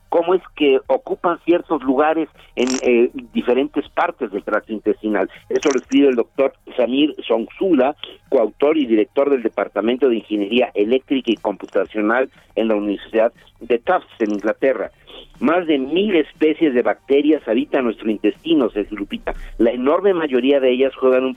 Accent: Mexican